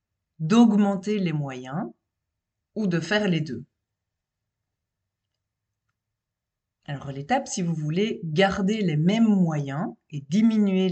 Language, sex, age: French, female, 30-49